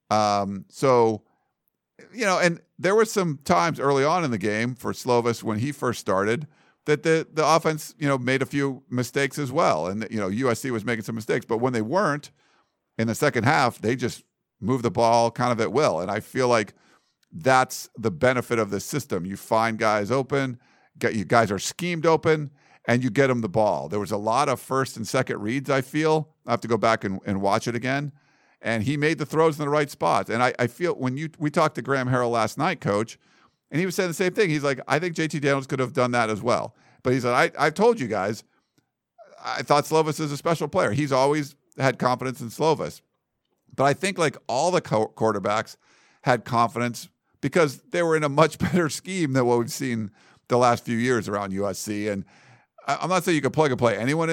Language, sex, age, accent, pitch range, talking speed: English, male, 50-69, American, 115-155 Hz, 230 wpm